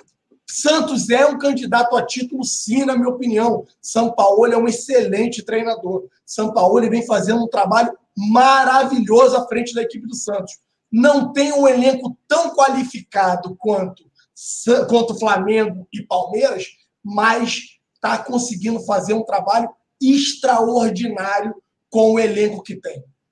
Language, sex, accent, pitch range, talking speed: Portuguese, male, Brazilian, 200-250 Hz, 130 wpm